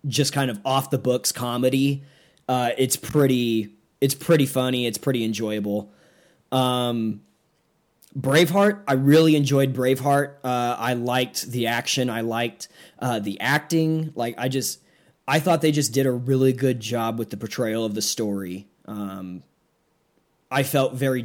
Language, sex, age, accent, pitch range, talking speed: English, male, 20-39, American, 110-135 Hz, 155 wpm